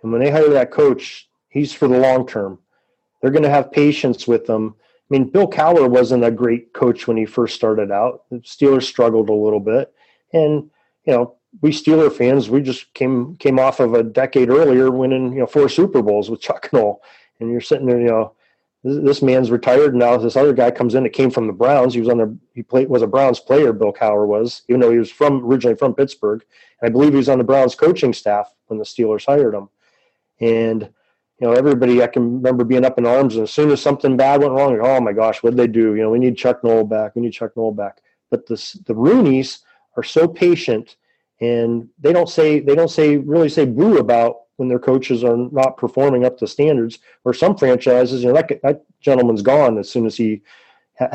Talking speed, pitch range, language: 230 wpm, 115-135 Hz, English